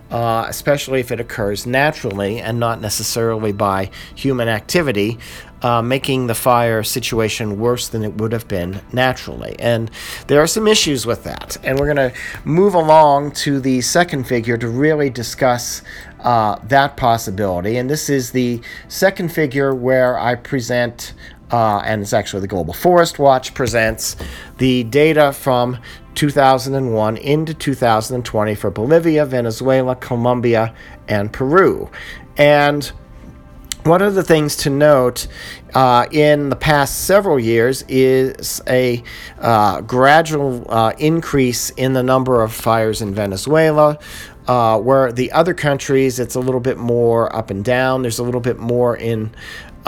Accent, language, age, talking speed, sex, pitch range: American, English, 50-69, 145 wpm, male, 115-140 Hz